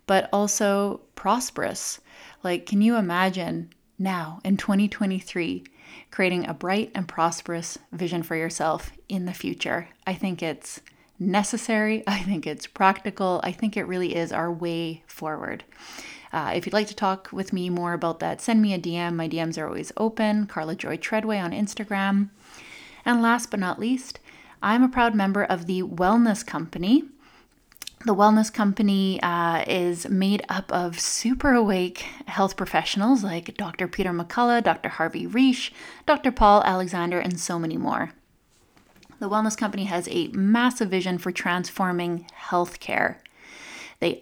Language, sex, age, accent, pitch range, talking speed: English, female, 20-39, American, 175-215 Hz, 150 wpm